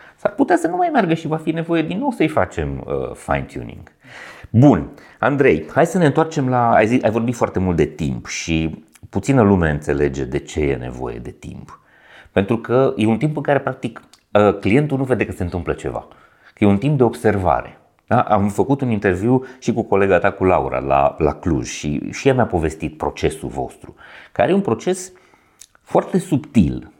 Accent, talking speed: native, 190 wpm